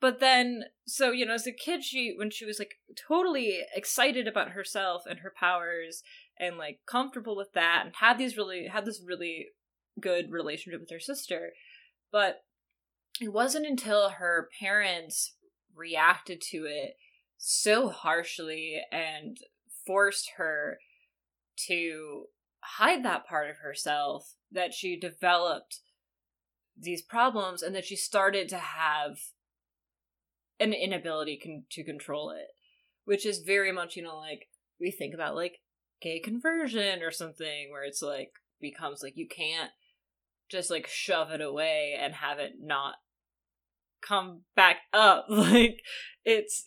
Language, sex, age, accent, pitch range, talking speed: English, female, 20-39, American, 155-235 Hz, 140 wpm